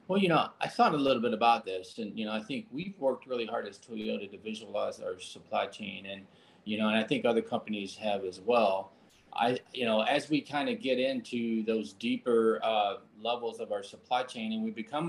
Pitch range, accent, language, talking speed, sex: 110-165 Hz, American, English, 225 wpm, male